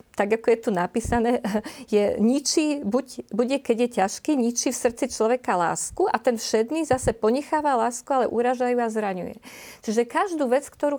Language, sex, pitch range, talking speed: Slovak, female, 210-255 Hz, 175 wpm